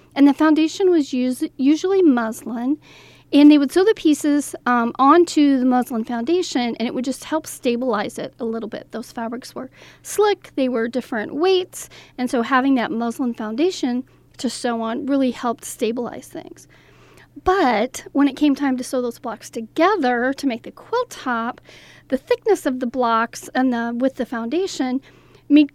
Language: English